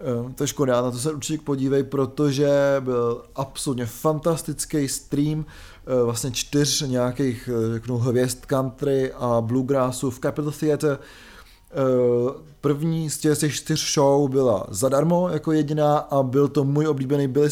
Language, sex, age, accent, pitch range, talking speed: Czech, male, 30-49, native, 130-150 Hz, 135 wpm